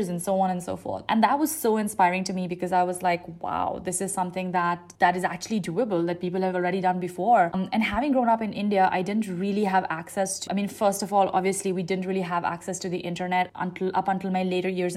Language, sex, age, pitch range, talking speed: English, female, 20-39, 180-210 Hz, 260 wpm